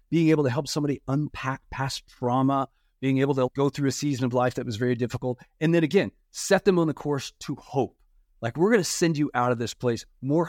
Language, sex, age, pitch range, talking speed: English, male, 30-49, 125-160 Hz, 240 wpm